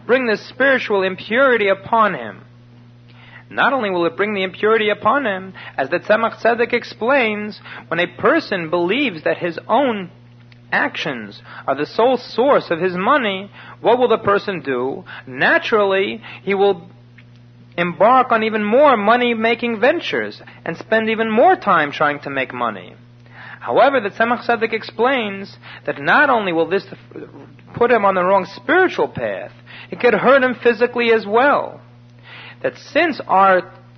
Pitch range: 165-240 Hz